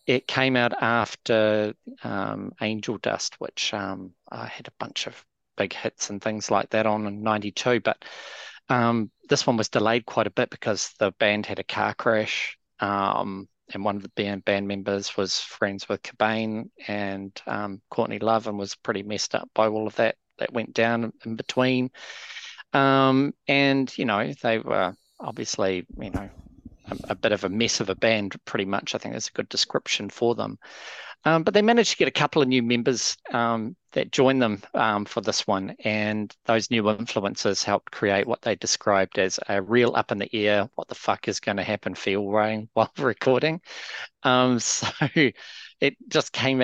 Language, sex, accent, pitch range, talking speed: English, male, Australian, 100-120 Hz, 185 wpm